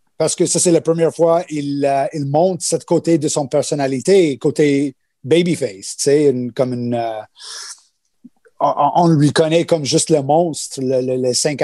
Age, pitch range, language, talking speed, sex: 30-49, 140-170 Hz, French, 185 wpm, male